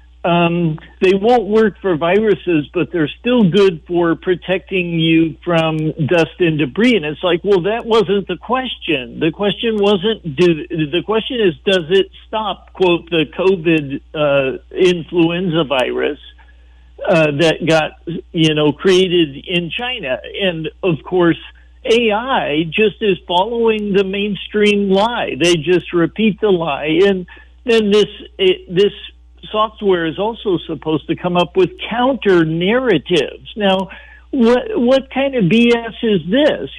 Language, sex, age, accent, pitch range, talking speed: English, male, 60-79, American, 160-205 Hz, 140 wpm